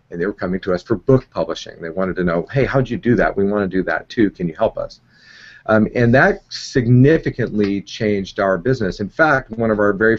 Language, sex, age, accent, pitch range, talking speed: English, male, 40-59, American, 95-115 Hz, 240 wpm